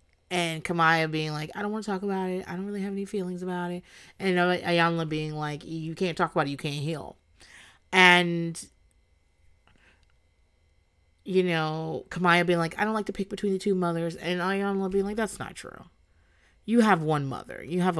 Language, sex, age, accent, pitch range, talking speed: English, female, 30-49, American, 145-185 Hz, 195 wpm